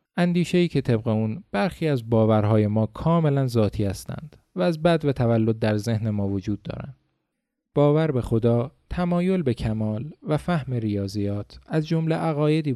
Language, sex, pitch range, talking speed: Persian, male, 105-160 Hz, 160 wpm